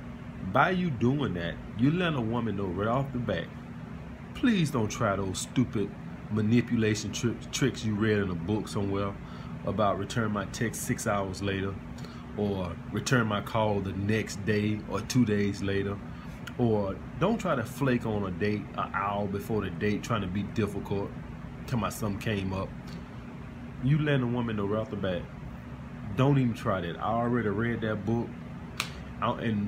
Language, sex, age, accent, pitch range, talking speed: English, male, 20-39, American, 100-125 Hz, 170 wpm